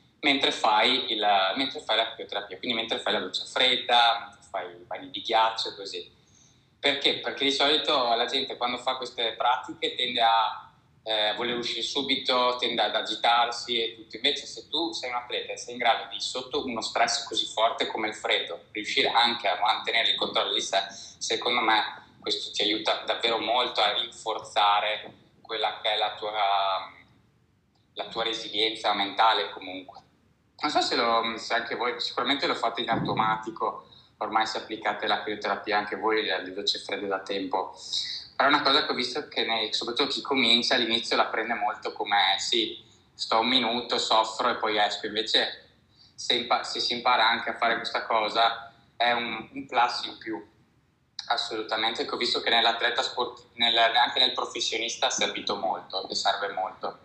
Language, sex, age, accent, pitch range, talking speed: Italian, male, 20-39, native, 110-125 Hz, 180 wpm